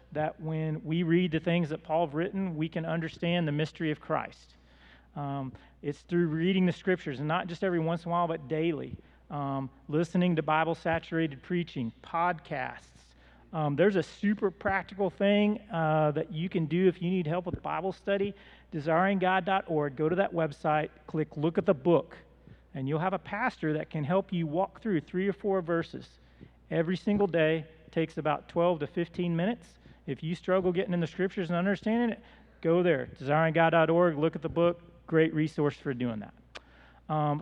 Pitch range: 145-175 Hz